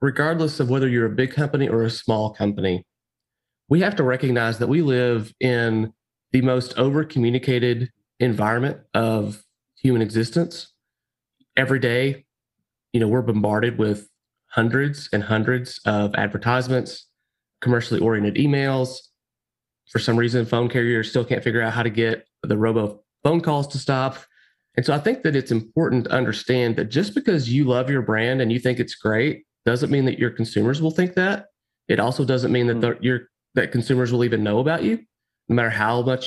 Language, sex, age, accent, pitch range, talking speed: English, male, 30-49, American, 115-135 Hz, 175 wpm